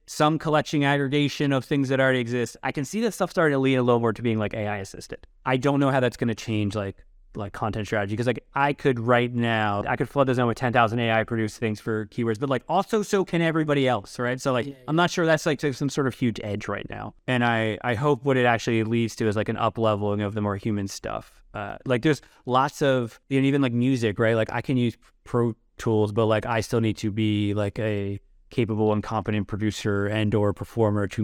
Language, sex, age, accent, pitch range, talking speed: English, male, 20-39, American, 105-130 Hz, 245 wpm